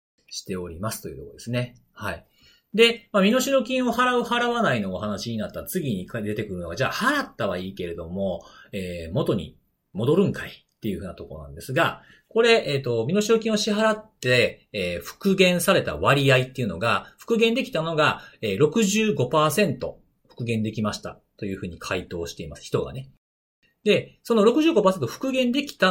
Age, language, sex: 40-59, Japanese, male